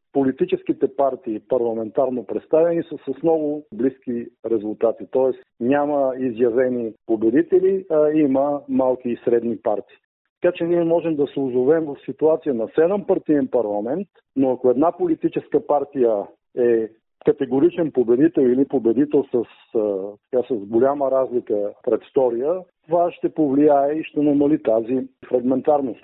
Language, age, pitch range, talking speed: Bulgarian, 50-69, 125-170 Hz, 125 wpm